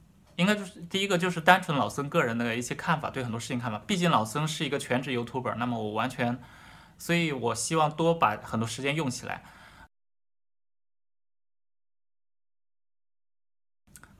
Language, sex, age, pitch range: Chinese, male, 20-39, 115-160 Hz